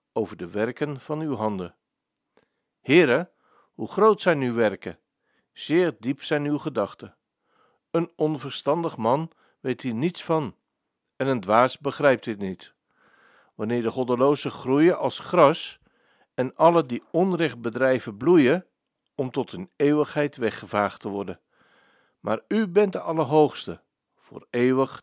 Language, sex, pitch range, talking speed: Dutch, male, 115-160 Hz, 135 wpm